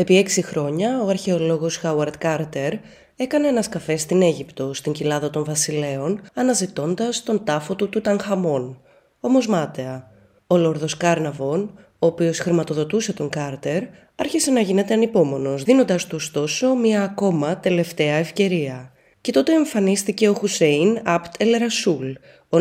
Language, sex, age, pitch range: Greek, female, 20-39, 155-215 Hz